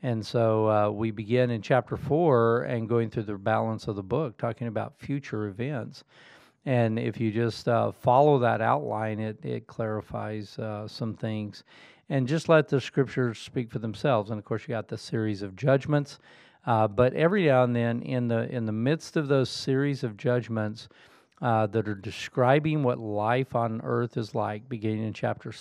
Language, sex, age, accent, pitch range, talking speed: English, male, 40-59, American, 110-125 Hz, 185 wpm